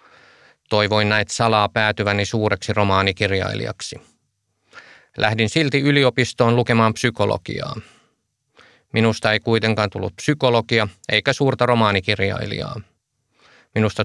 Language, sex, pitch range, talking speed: Finnish, male, 105-120 Hz, 85 wpm